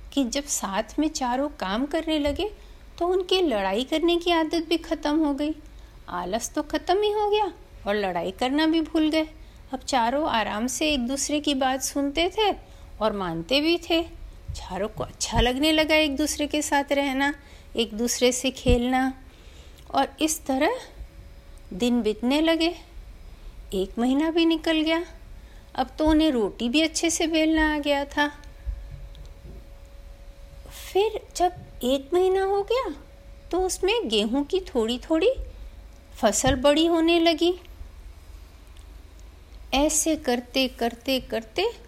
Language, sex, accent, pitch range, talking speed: Hindi, female, native, 240-325 Hz, 145 wpm